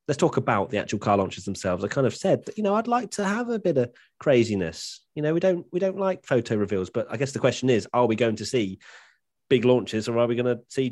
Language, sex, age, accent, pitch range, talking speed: English, male, 30-49, British, 100-135 Hz, 280 wpm